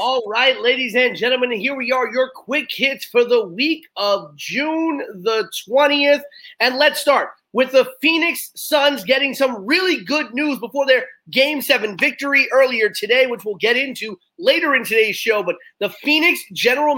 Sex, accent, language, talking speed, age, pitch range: male, American, English, 175 wpm, 30-49, 220-275 Hz